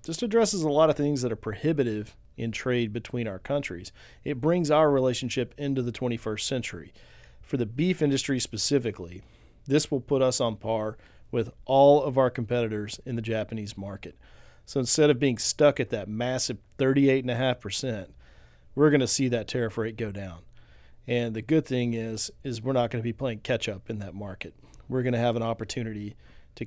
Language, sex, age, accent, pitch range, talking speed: English, male, 40-59, American, 105-135 Hz, 185 wpm